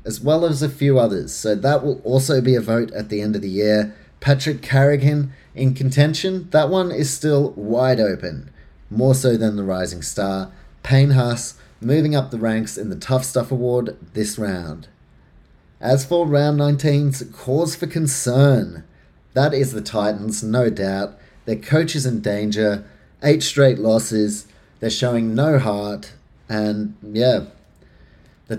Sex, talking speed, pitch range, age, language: male, 160 wpm, 105-140 Hz, 30-49, English